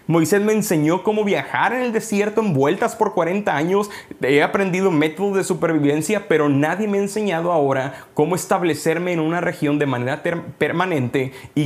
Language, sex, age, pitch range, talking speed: Spanish, male, 30-49, 145-180 Hz, 175 wpm